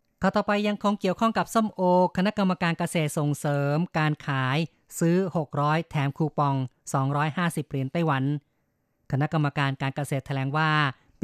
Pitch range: 140-160 Hz